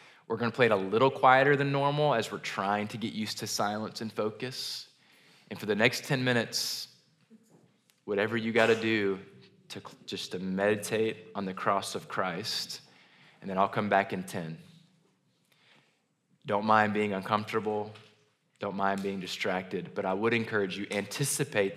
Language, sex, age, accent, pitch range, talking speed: English, male, 20-39, American, 95-130 Hz, 165 wpm